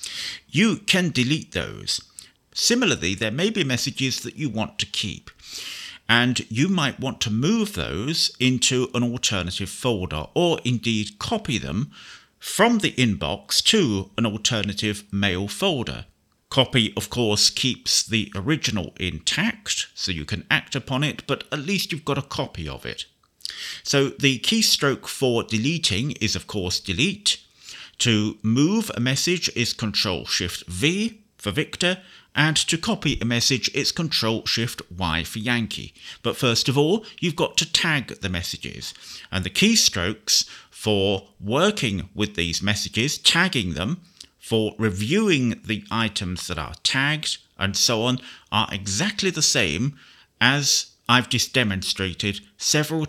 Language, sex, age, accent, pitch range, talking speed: English, male, 50-69, British, 100-145 Hz, 145 wpm